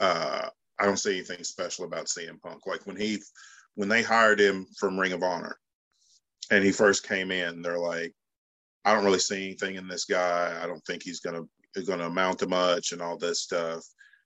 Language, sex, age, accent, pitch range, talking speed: English, male, 40-59, American, 90-105 Hz, 205 wpm